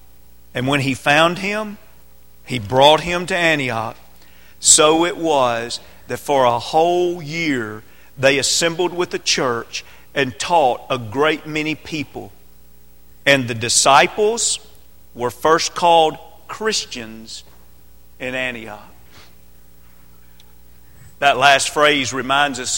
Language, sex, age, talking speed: English, male, 40-59, 115 wpm